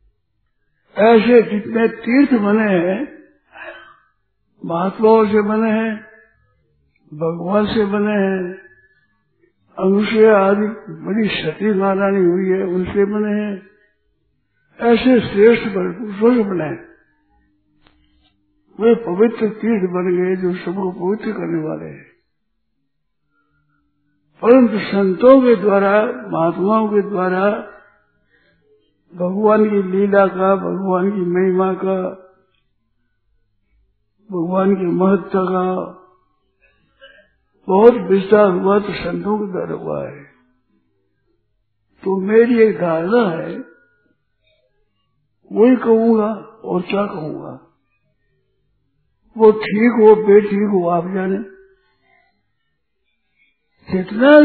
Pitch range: 160-215 Hz